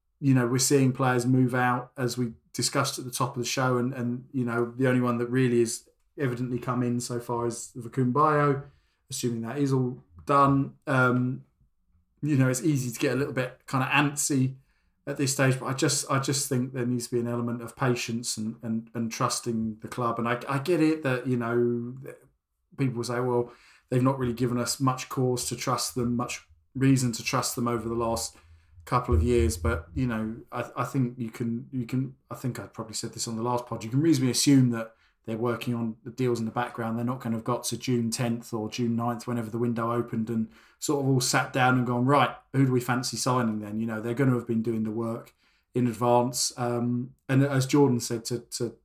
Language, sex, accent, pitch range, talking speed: English, male, British, 115-130 Hz, 230 wpm